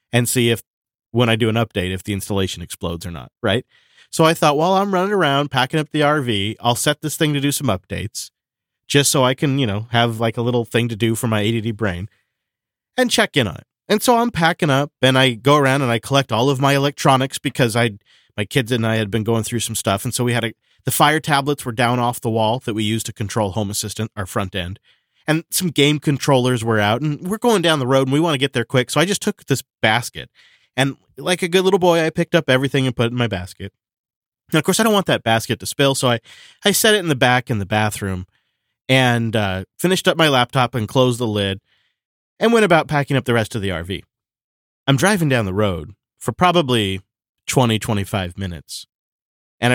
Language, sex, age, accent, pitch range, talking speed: English, male, 40-59, American, 110-145 Hz, 240 wpm